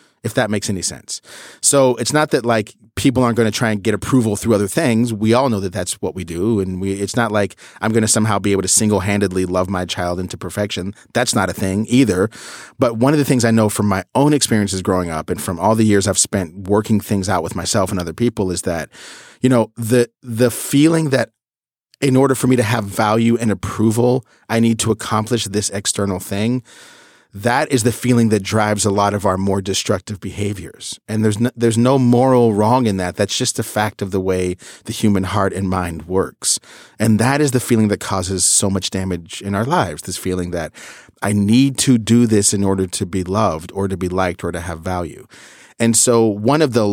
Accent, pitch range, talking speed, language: American, 95-120 Hz, 230 wpm, English